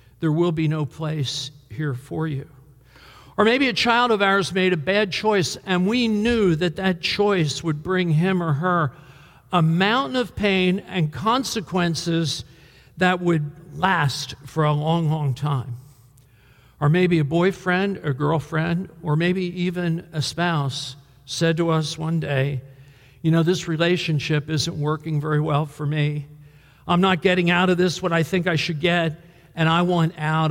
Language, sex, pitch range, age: English, male, 150-185 Hz, 60-79